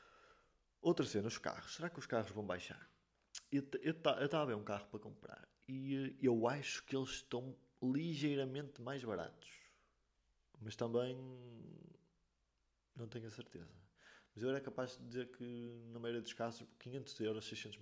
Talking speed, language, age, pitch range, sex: 160 wpm, Portuguese, 20-39, 105-130 Hz, male